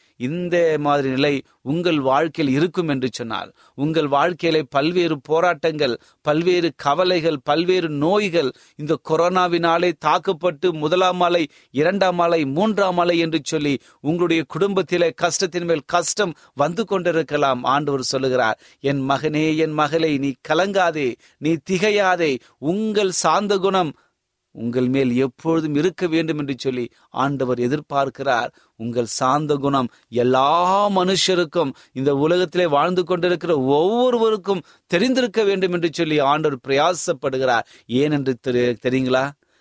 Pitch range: 135-175 Hz